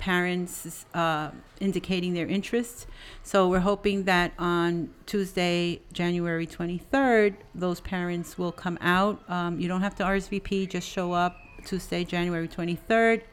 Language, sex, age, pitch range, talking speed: English, female, 40-59, 170-195 Hz, 135 wpm